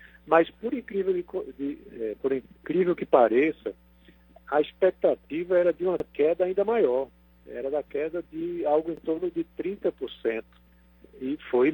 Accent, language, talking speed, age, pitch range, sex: Brazilian, Portuguese, 150 wpm, 50-69, 115-165 Hz, male